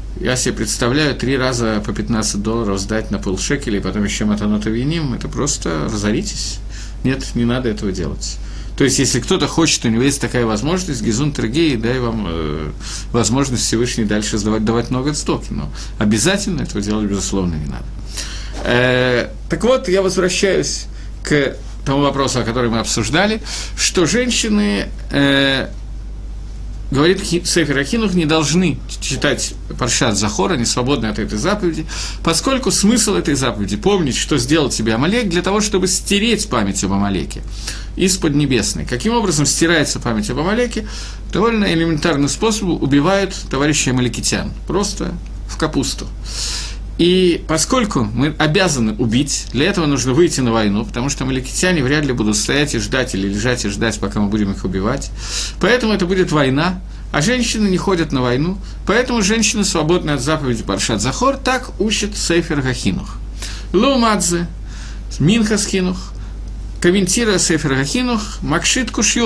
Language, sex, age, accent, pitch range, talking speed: Russian, male, 50-69, native, 110-185 Hz, 145 wpm